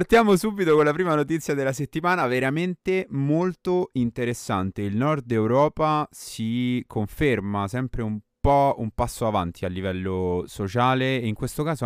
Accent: native